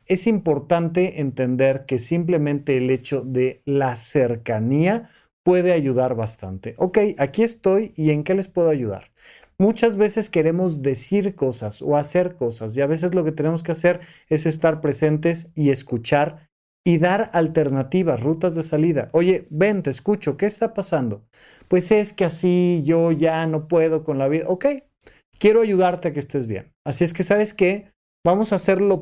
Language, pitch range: Spanish, 135-195 Hz